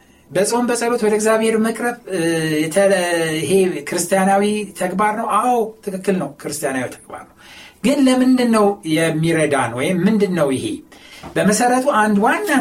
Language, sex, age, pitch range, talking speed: Amharic, male, 60-79, 155-220 Hz, 125 wpm